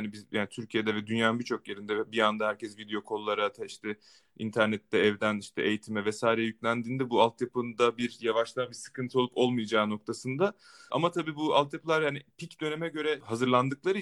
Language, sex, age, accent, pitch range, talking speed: Turkish, male, 30-49, native, 120-145 Hz, 165 wpm